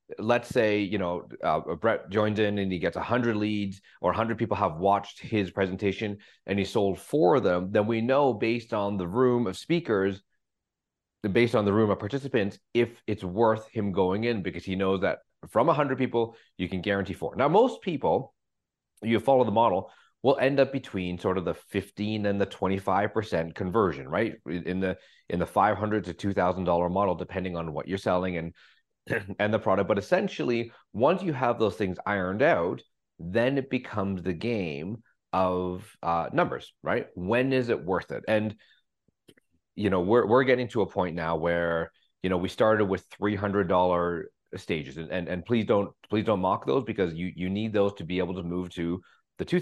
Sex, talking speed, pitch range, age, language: male, 190 wpm, 90-115 Hz, 30-49, English